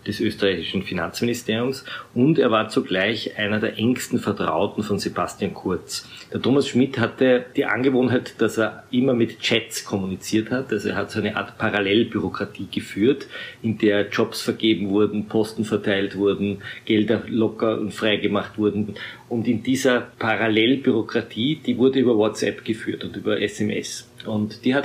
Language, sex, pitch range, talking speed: German, male, 105-120 Hz, 150 wpm